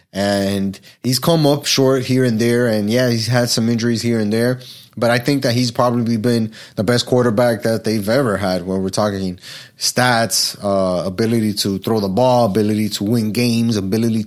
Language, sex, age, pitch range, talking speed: English, male, 20-39, 110-135 Hz, 200 wpm